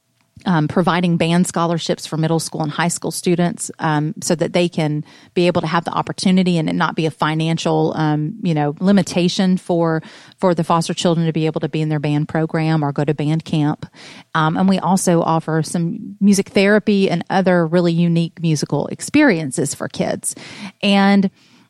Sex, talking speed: female, 190 wpm